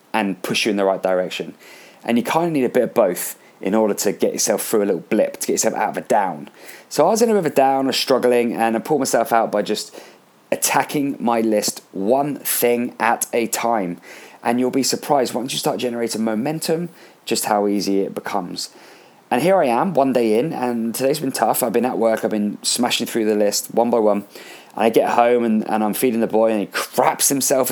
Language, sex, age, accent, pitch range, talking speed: English, male, 20-39, British, 100-120 Hz, 240 wpm